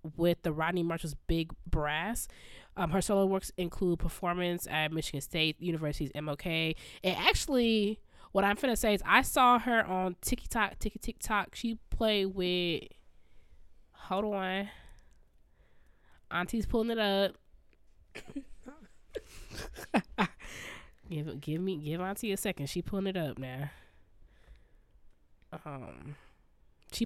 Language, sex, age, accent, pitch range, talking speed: English, female, 20-39, American, 145-195 Hz, 120 wpm